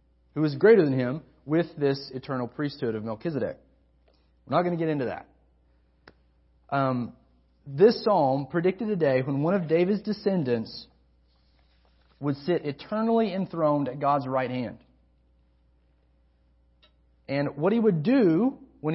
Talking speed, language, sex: 135 wpm, English, male